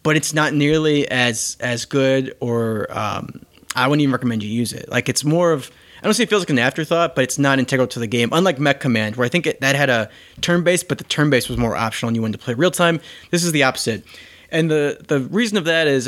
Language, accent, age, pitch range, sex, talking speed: English, American, 20-39, 120-155 Hz, male, 270 wpm